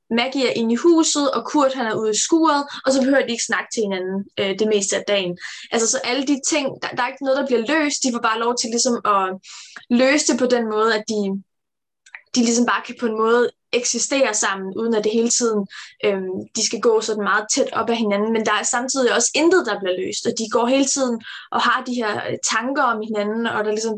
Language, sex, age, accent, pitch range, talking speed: Danish, female, 20-39, native, 215-255 Hz, 250 wpm